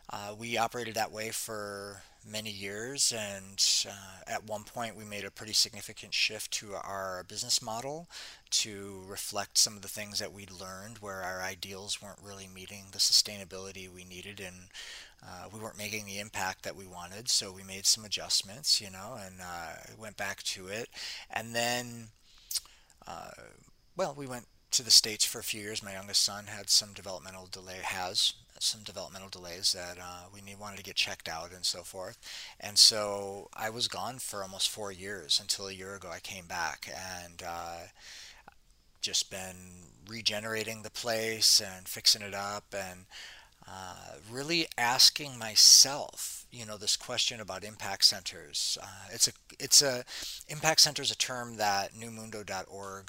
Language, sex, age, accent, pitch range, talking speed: English, male, 30-49, American, 95-110 Hz, 175 wpm